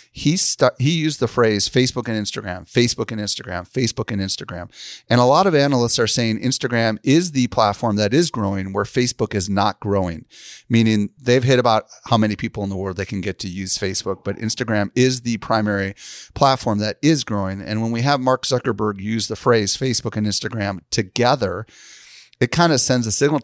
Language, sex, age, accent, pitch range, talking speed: English, male, 30-49, American, 105-130 Hz, 200 wpm